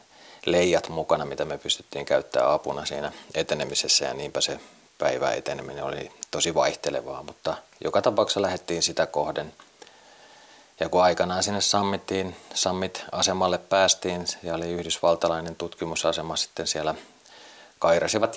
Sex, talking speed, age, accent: male, 120 wpm, 30-49, native